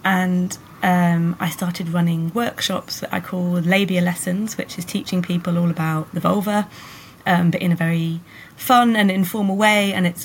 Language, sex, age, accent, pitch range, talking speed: English, female, 30-49, British, 165-195 Hz, 175 wpm